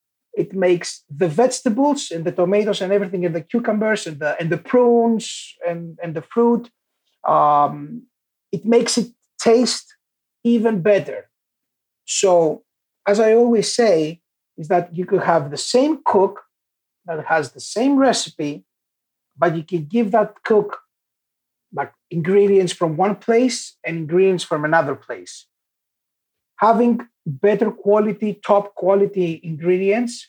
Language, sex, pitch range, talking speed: English, male, 160-215 Hz, 130 wpm